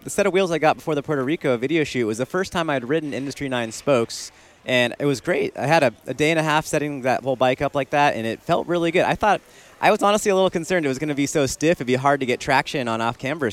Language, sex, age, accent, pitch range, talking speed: English, male, 30-49, American, 115-145 Hz, 300 wpm